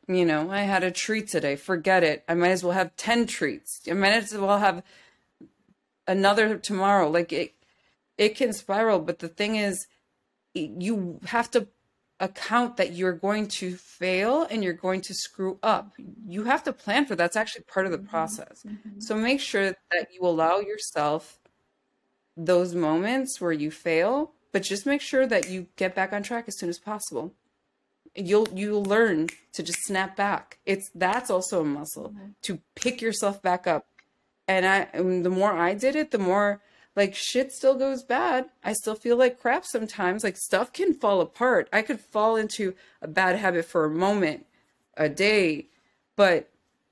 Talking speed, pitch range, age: 180 wpm, 180-220 Hz, 30-49